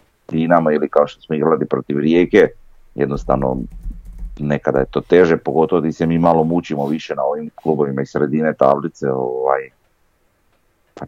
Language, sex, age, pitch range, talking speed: Croatian, male, 30-49, 70-80 Hz, 150 wpm